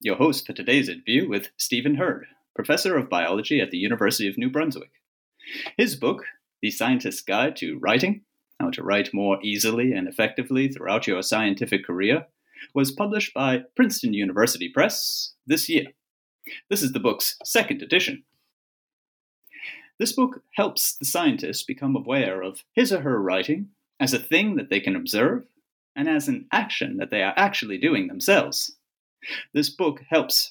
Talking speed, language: 160 wpm, English